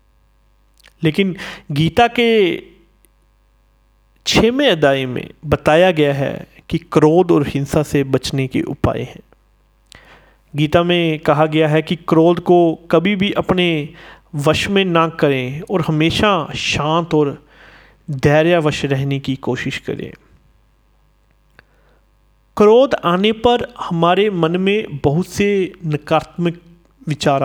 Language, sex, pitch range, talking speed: Hindi, male, 145-185 Hz, 115 wpm